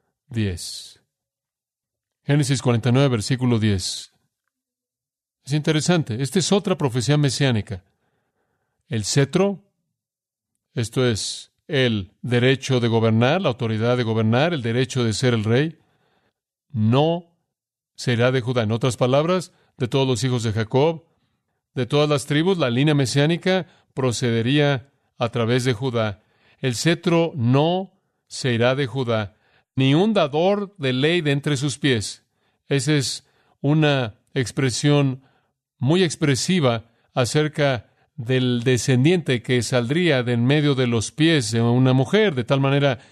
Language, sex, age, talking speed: Spanish, male, 40-59, 130 wpm